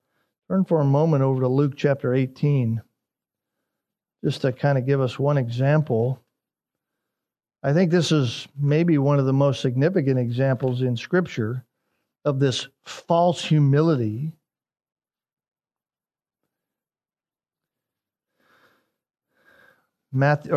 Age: 50-69